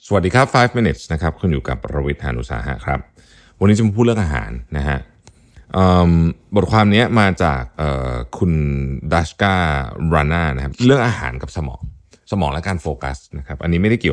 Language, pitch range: Thai, 75-105 Hz